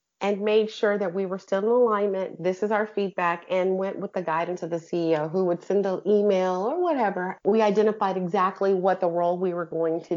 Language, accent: English, American